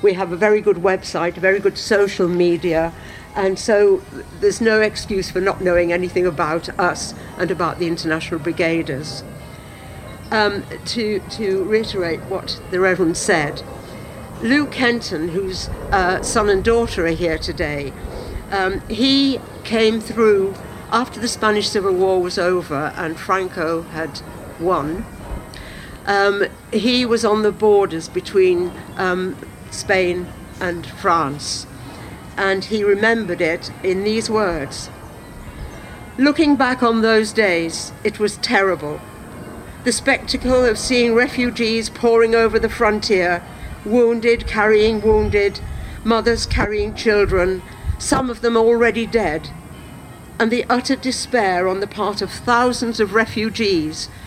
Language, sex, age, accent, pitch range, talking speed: English, female, 60-79, British, 175-230 Hz, 130 wpm